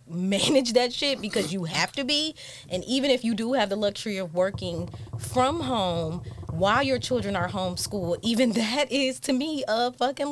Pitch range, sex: 155-210 Hz, female